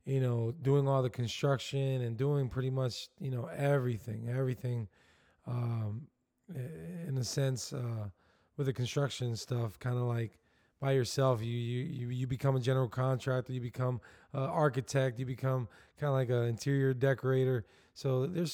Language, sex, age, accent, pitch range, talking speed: English, male, 20-39, American, 125-155 Hz, 160 wpm